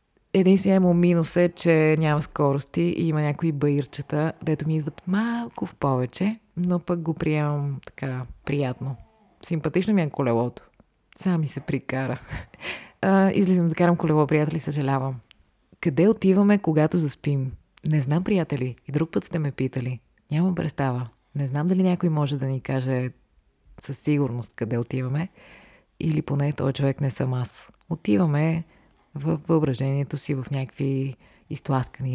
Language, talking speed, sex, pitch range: Bulgarian, 145 wpm, female, 130-165 Hz